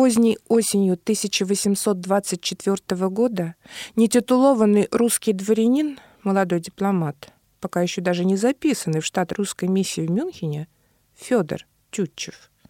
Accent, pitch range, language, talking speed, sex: native, 175-245 Hz, Russian, 105 wpm, female